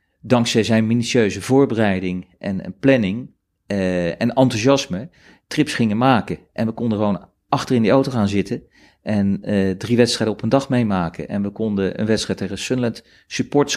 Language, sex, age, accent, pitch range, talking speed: Dutch, male, 40-59, Dutch, 95-115 Hz, 165 wpm